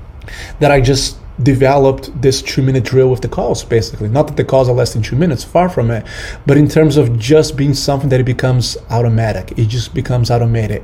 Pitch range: 115-140 Hz